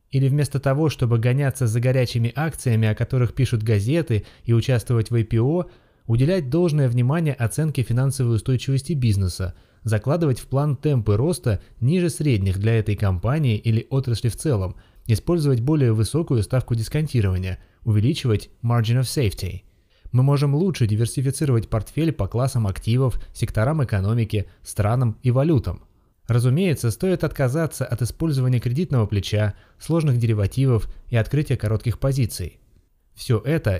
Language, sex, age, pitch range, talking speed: Russian, male, 20-39, 105-145 Hz, 130 wpm